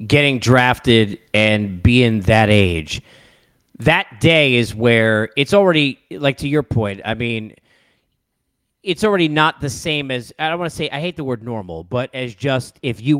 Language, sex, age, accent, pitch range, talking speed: English, male, 40-59, American, 115-155 Hz, 175 wpm